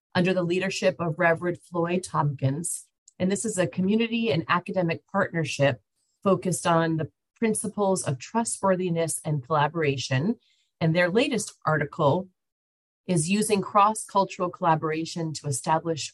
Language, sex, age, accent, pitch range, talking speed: English, female, 30-49, American, 145-180 Hz, 125 wpm